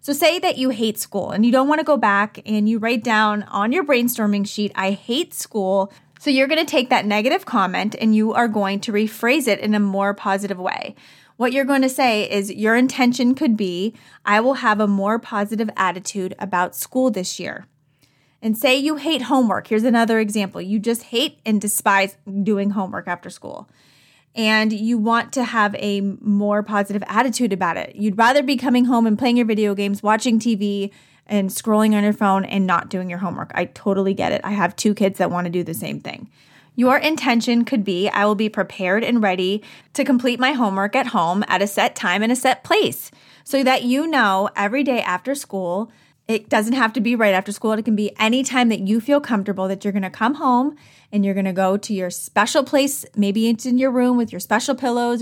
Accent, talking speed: American, 220 wpm